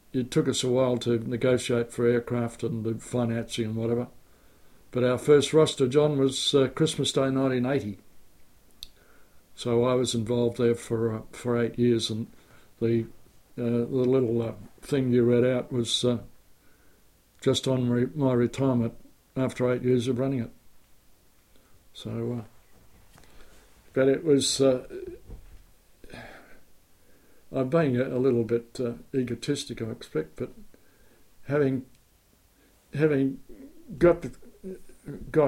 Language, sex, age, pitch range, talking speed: English, male, 60-79, 120-140 Hz, 130 wpm